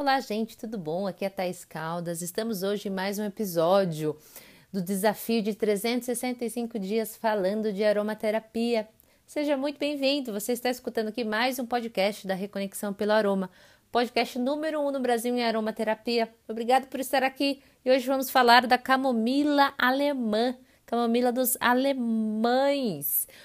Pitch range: 215-255 Hz